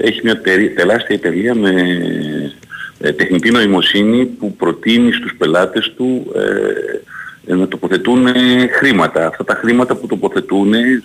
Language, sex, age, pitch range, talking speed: Greek, male, 50-69, 100-130 Hz, 110 wpm